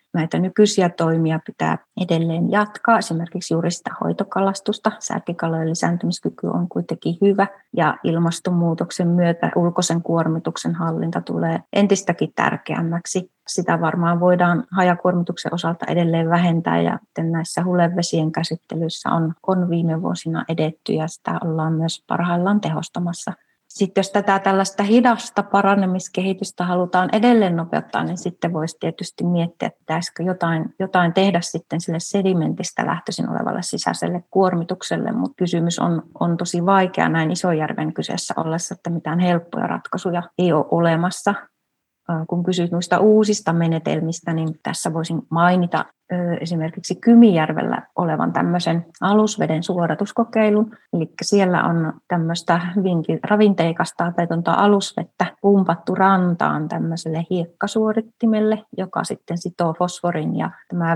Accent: native